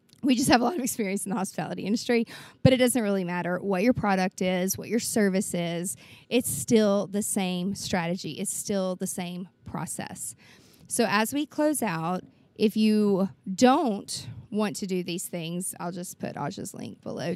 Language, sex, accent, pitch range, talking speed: English, female, American, 190-230 Hz, 185 wpm